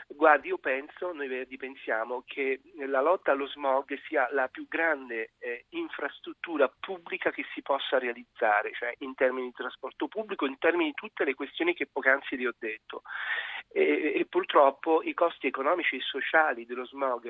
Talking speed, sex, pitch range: 170 wpm, male, 125-165 Hz